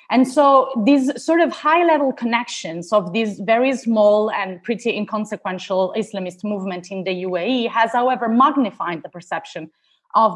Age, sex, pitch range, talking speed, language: 30-49, female, 200-260 Hz, 150 wpm, English